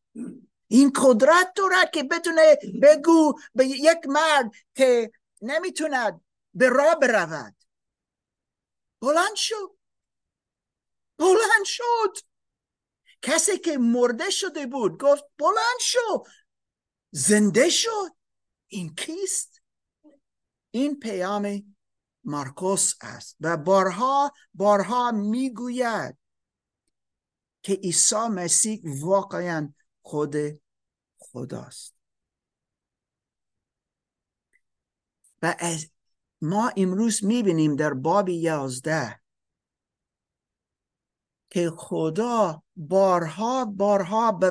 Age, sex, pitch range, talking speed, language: 50-69, male, 175-285 Hz, 80 wpm, Persian